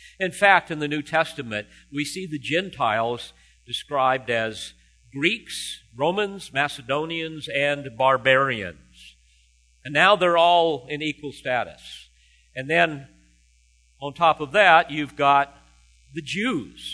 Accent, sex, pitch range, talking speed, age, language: American, male, 100-160 Hz, 120 wpm, 50-69, English